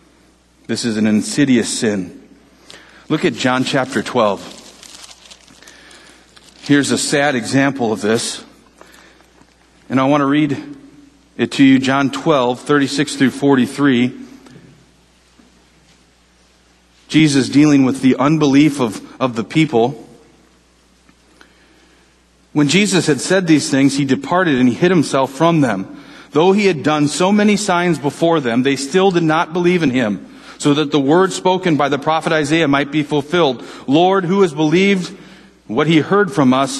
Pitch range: 140-185 Hz